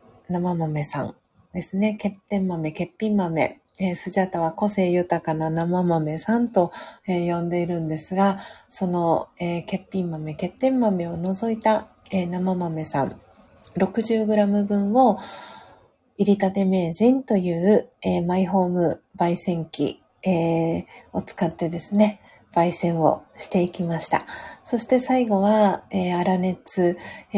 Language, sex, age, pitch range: Japanese, female, 40-59, 170-205 Hz